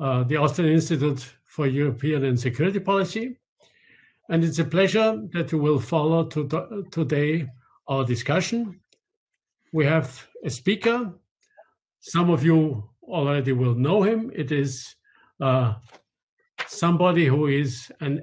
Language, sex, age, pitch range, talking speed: English, male, 50-69, 135-175 Hz, 130 wpm